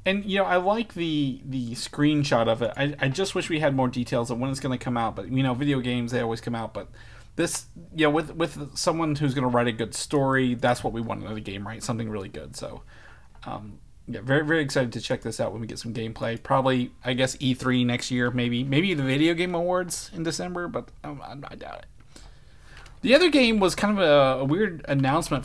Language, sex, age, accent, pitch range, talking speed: English, male, 30-49, American, 120-145 Hz, 250 wpm